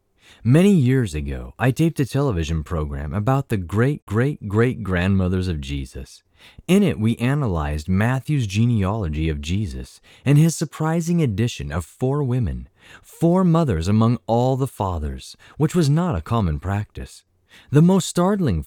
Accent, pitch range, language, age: American, 85-140 Hz, English, 30-49